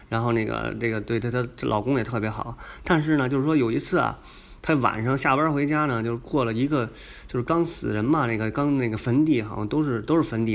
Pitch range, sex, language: 110-140 Hz, male, Chinese